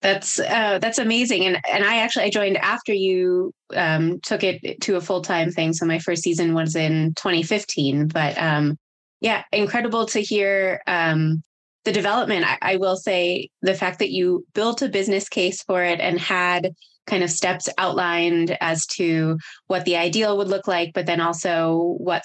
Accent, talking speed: American, 185 wpm